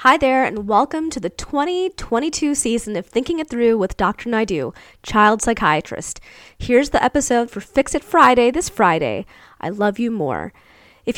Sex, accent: female, American